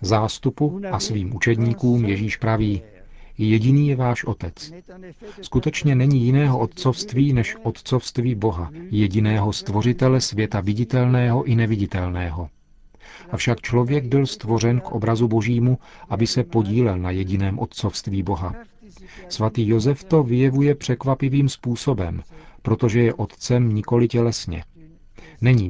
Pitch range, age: 110-130 Hz, 40-59